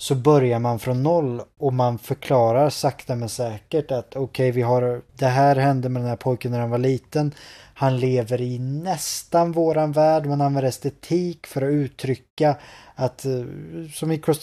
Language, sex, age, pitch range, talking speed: Swedish, male, 20-39, 120-140 Hz, 160 wpm